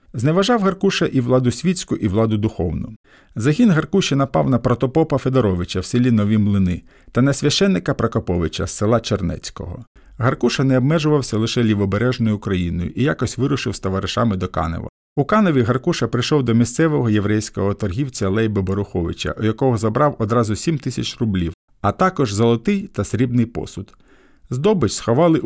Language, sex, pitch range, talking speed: Ukrainian, male, 100-140 Hz, 150 wpm